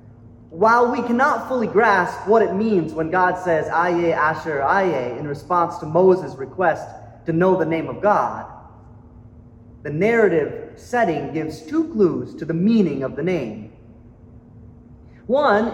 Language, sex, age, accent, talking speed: English, male, 30-49, American, 145 wpm